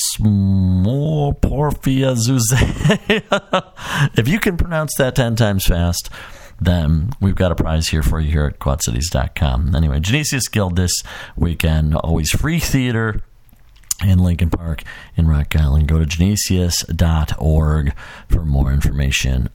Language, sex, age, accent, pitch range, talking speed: English, male, 50-69, American, 80-115 Hz, 125 wpm